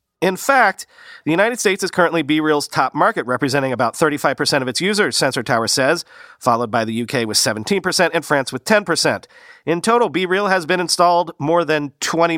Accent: American